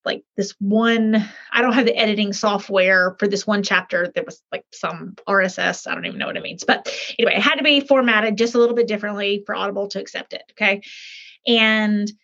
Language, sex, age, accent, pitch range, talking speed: English, female, 30-49, American, 205-260 Hz, 215 wpm